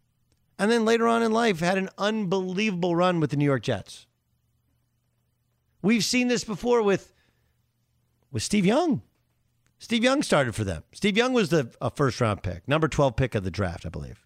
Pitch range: 120-180 Hz